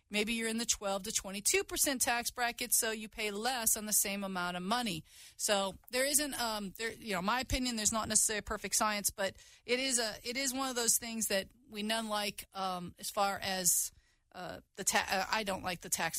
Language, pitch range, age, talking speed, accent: English, 210-260 Hz, 40-59, 210 wpm, American